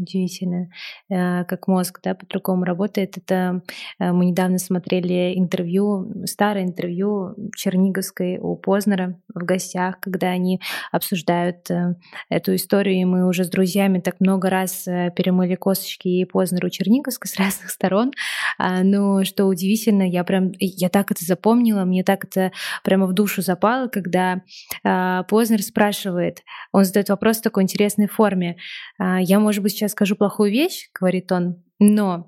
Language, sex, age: Russian, female, 20-39